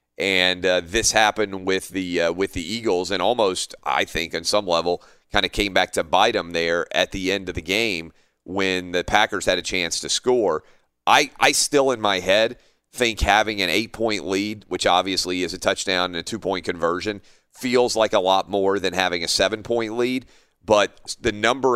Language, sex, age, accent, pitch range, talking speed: English, male, 30-49, American, 90-105 Hz, 200 wpm